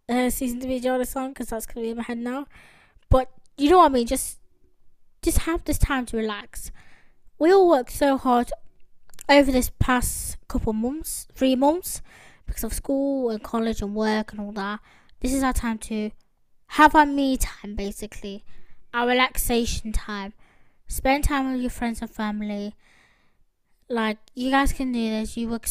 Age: 20-39